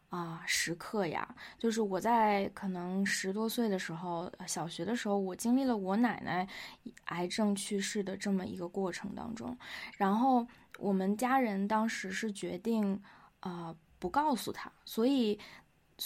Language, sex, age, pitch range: Chinese, female, 20-39, 195-250 Hz